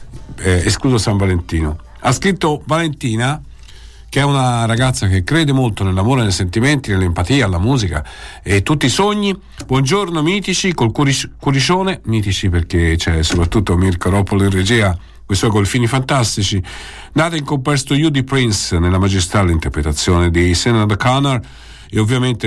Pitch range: 100-140 Hz